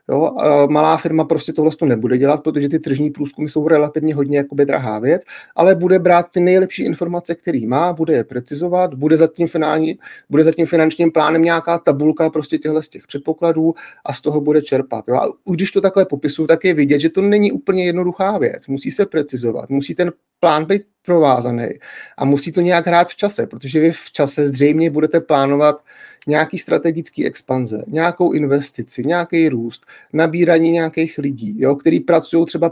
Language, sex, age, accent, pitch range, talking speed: Czech, male, 30-49, native, 145-170 Hz, 180 wpm